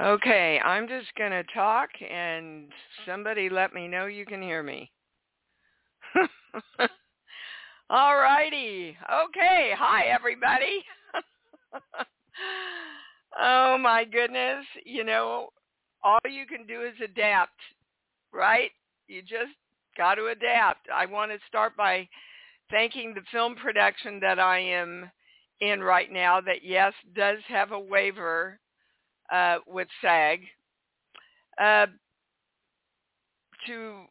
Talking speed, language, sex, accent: 110 wpm, English, female, American